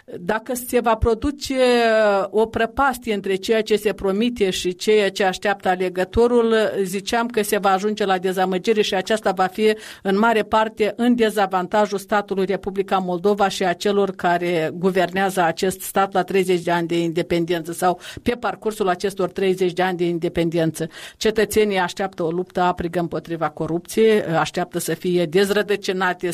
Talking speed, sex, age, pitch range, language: 155 wpm, female, 50-69, 185-225 Hz, Romanian